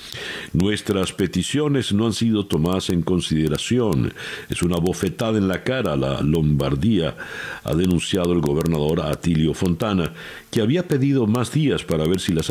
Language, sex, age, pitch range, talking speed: Spanish, male, 60-79, 85-115 Hz, 150 wpm